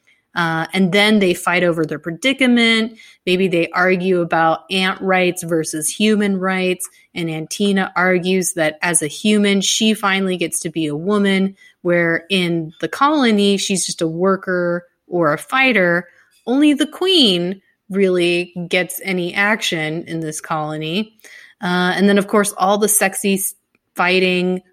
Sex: female